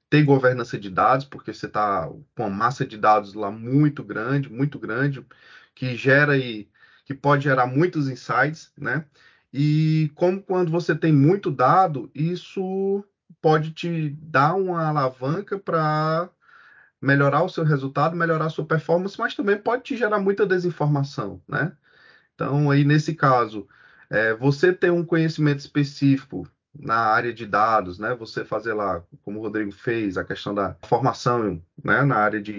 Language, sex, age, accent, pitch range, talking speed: Portuguese, male, 20-39, Brazilian, 135-175 Hz, 155 wpm